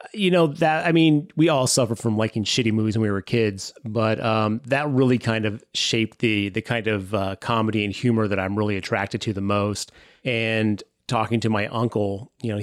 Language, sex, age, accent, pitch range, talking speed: English, male, 30-49, American, 110-130 Hz, 215 wpm